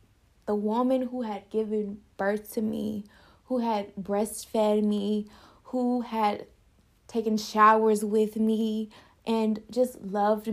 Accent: American